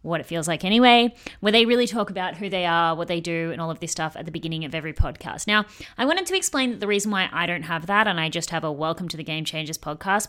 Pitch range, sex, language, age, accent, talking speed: 165-210 Hz, female, English, 20-39, Australian, 295 wpm